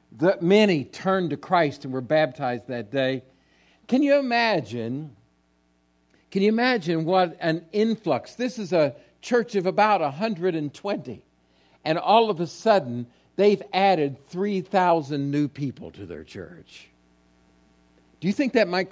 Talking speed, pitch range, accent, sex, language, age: 140 wpm, 135-190 Hz, American, male, English, 60-79